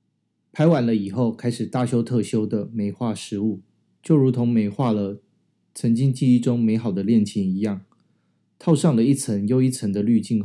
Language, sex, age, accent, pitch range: Chinese, male, 20-39, native, 105-130 Hz